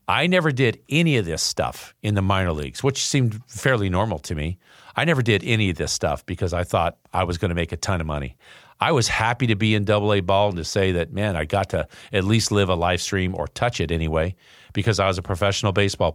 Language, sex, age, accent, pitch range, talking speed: English, male, 50-69, American, 85-110 Hz, 255 wpm